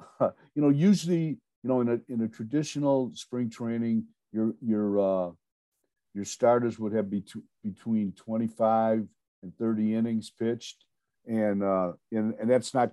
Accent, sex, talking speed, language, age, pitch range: American, male, 160 wpm, English, 50-69, 110-135 Hz